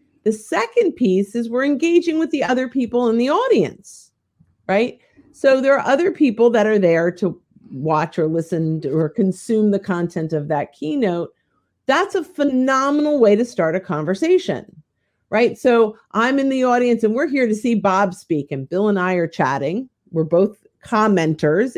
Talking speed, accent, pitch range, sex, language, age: 175 wpm, American, 180-255 Hz, female, English, 50-69